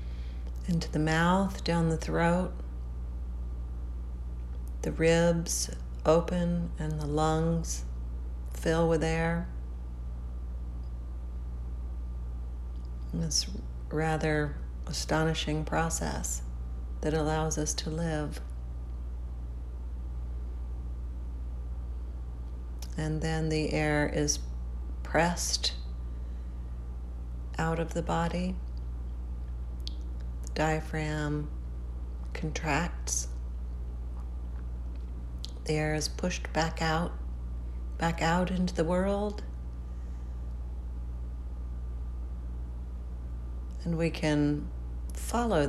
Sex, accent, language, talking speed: female, American, English, 65 wpm